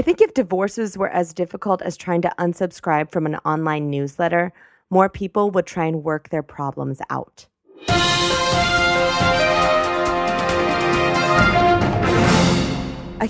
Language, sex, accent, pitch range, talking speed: English, female, American, 160-205 Hz, 115 wpm